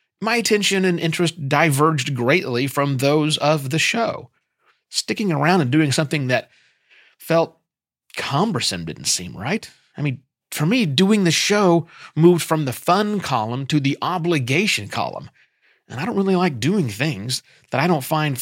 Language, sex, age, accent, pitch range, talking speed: English, male, 30-49, American, 135-180 Hz, 160 wpm